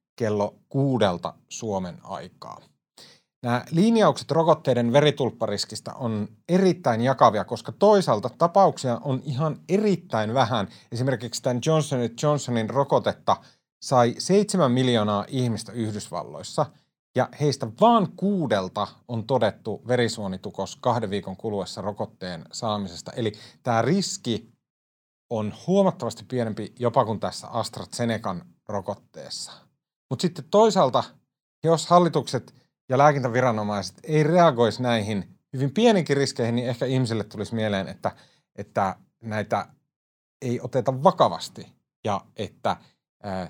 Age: 30-49